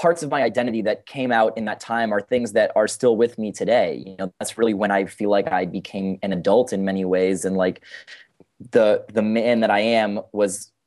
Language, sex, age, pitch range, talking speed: English, male, 20-39, 95-110 Hz, 230 wpm